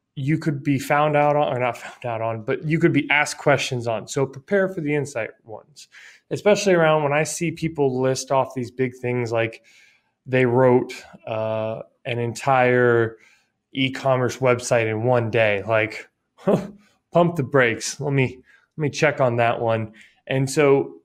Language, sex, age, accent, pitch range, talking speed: English, male, 20-39, American, 130-170 Hz, 170 wpm